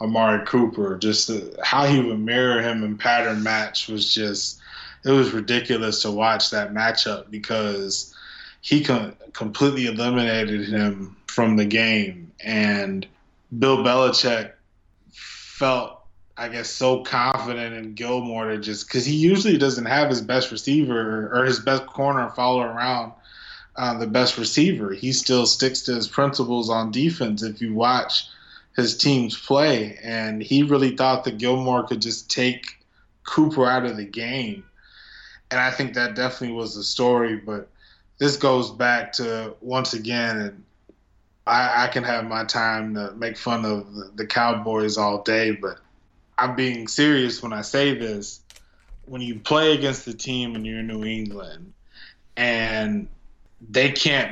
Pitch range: 110-130 Hz